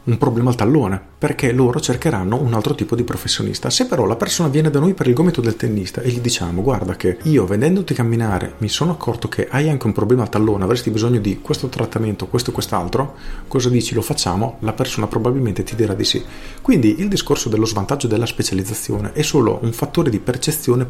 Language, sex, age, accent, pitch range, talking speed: Italian, male, 40-59, native, 110-140 Hz, 215 wpm